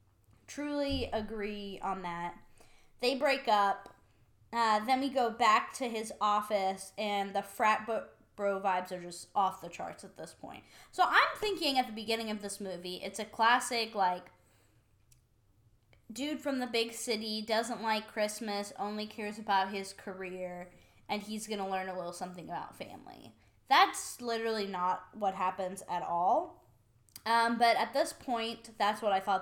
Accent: American